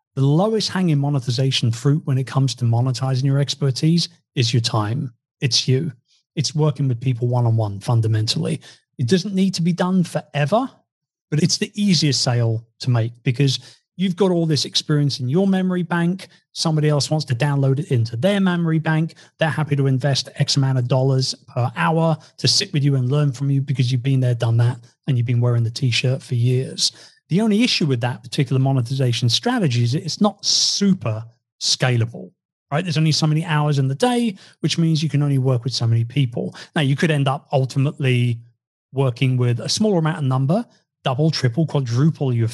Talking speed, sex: 195 wpm, male